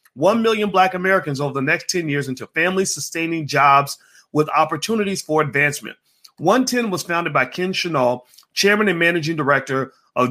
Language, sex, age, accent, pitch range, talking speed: English, male, 40-59, American, 145-185 Hz, 155 wpm